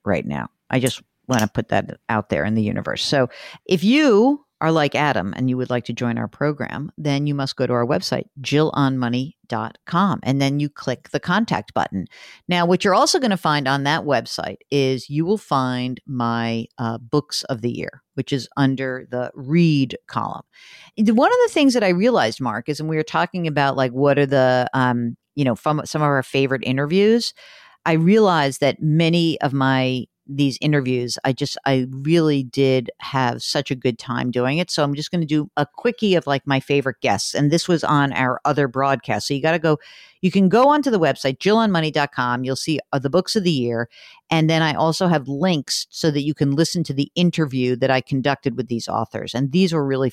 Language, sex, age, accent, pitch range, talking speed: English, female, 50-69, American, 130-165 Hz, 215 wpm